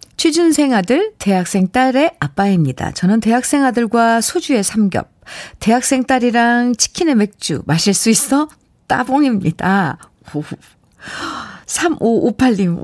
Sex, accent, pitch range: female, native, 185-270 Hz